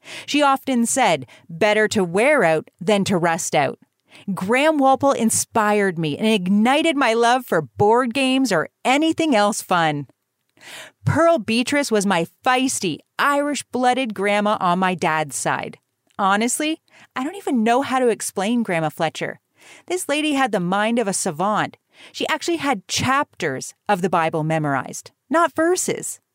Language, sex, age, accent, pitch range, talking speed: English, female, 40-59, American, 190-265 Hz, 150 wpm